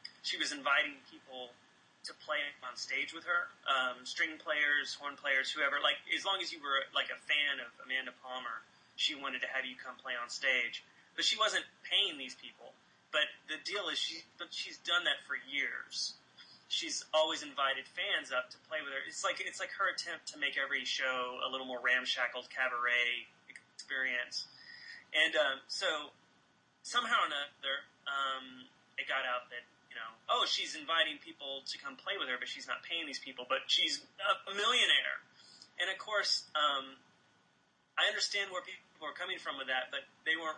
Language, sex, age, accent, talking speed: English, male, 30-49, American, 185 wpm